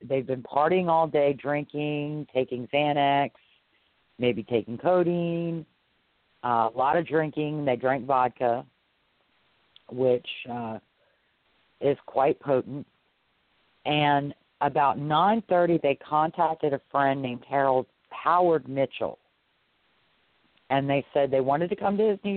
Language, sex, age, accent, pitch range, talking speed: English, female, 50-69, American, 125-155 Hz, 120 wpm